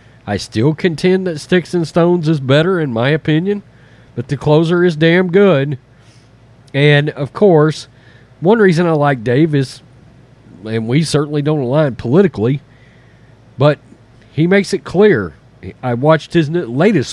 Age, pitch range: 40-59, 125-180 Hz